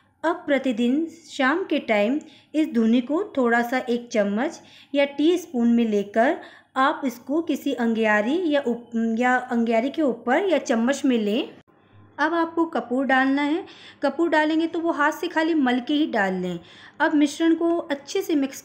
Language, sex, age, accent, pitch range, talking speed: Hindi, female, 20-39, native, 230-300 Hz, 165 wpm